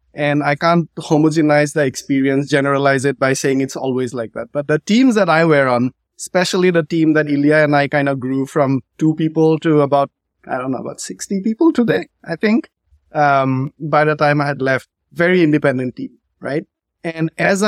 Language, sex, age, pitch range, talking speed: English, male, 30-49, 135-160 Hz, 195 wpm